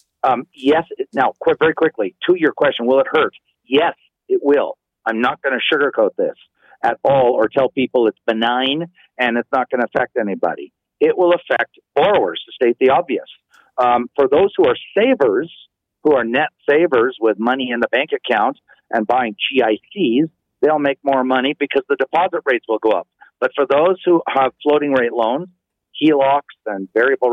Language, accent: English, American